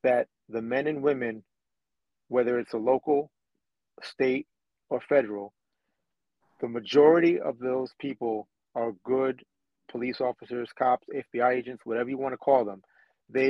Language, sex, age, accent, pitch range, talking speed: English, male, 30-49, American, 125-150 Hz, 135 wpm